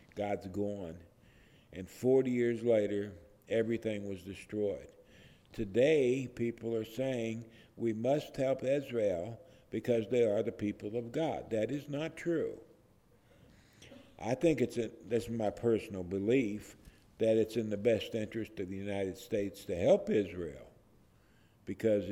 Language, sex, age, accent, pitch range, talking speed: English, male, 50-69, American, 95-115 Hz, 140 wpm